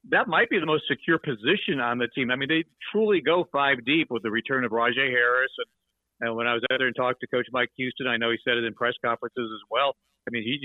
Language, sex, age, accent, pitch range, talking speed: English, male, 50-69, American, 115-140 Hz, 275 wpm